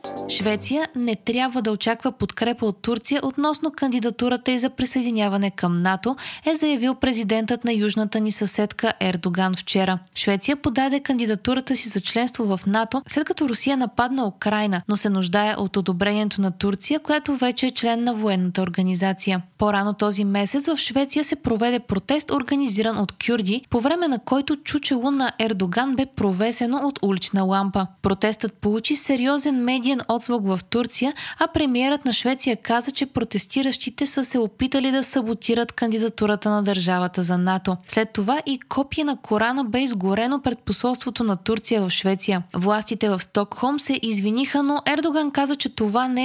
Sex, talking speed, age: female, 160 wpm, 20-39